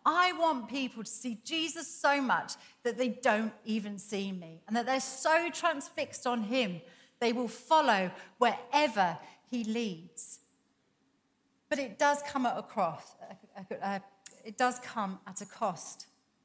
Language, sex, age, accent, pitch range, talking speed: English, female, 40-59, British, 210-290 Hz, 145 wpm